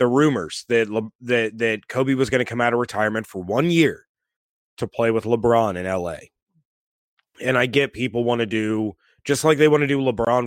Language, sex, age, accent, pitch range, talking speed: English, male, 30-49, American, 105-130 Hz, 210 wpm